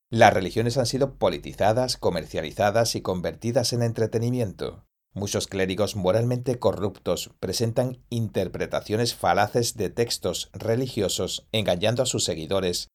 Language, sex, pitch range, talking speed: Spanish, male, 95-120 Hz, 110 wpm